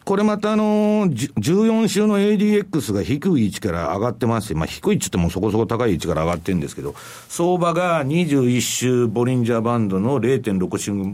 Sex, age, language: male, 60-79, Japanese